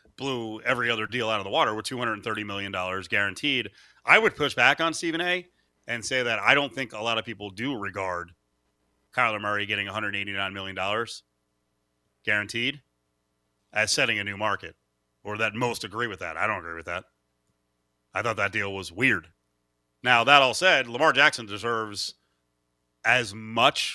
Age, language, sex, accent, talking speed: 30-49, English, male, American, 170 wpm